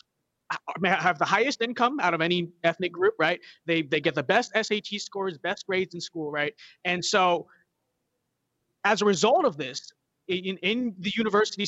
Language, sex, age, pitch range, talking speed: English, male, 20-39, 165-210 Hz, 170 wpm